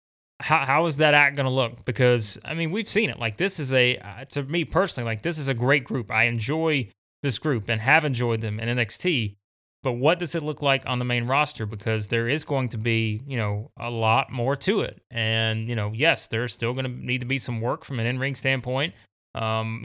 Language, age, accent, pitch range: English, 30-49, American, 115-150 Hz